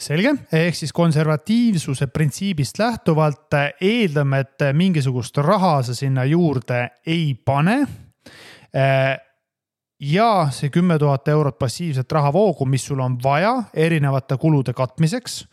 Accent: Finnish